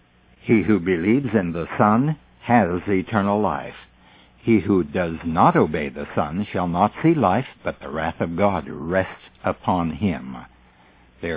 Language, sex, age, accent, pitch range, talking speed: English, male, 60-79, American, 85-120 Hz, 155 wpm